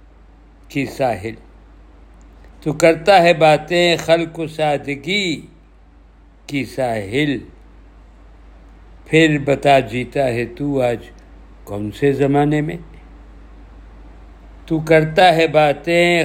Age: 60-79